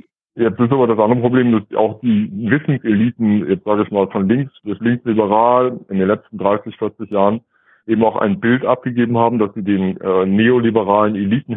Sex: male